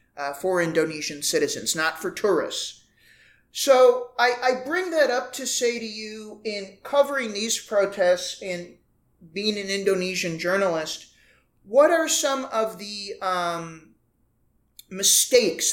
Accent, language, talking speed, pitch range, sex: American, English, 125 wpm, 160-205 Hz, male